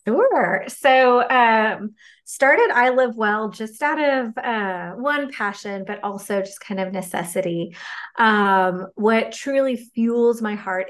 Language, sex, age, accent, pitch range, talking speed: English, female, 30-49, American, 195-245 Hz, 140 wpm